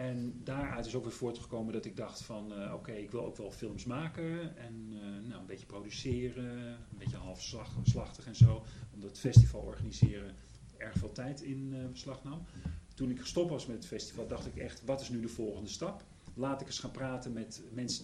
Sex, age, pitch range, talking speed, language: male, 40-59, 110-135 Hz, 205 wpm, Dutch